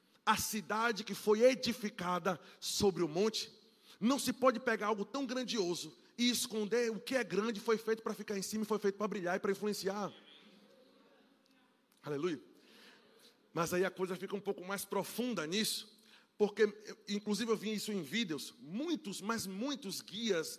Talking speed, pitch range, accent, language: 165 wpm, 190-225 Hz, Brazilian, Portuguese